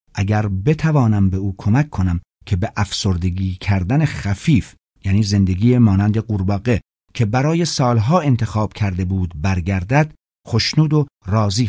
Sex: male